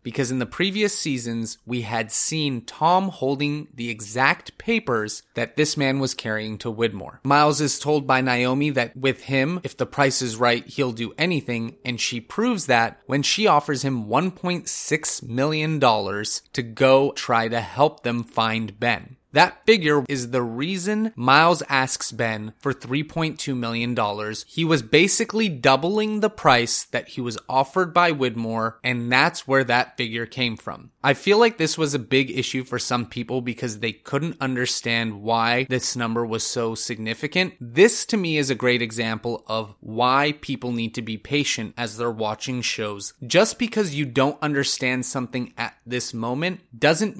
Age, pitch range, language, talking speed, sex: 30-49, 115-150 Hz, English, 170 wpm, male